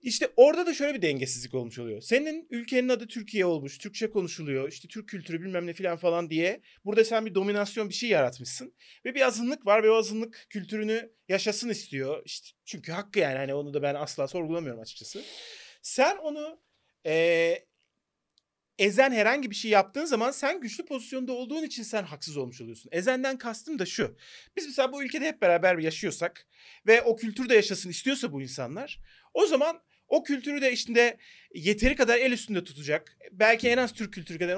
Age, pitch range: 40-59, 165-260 Hz